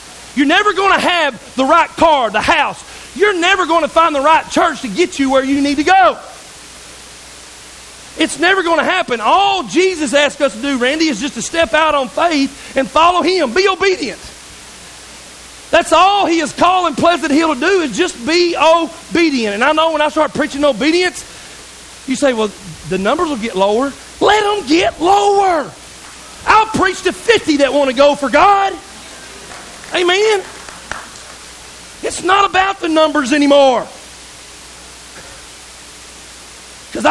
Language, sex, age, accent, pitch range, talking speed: English, male, 40-59, American, 245-335 Hz, 165 wpm